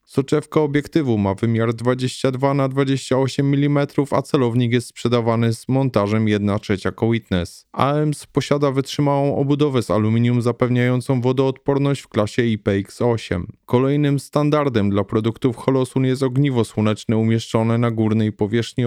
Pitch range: 115-135 Hz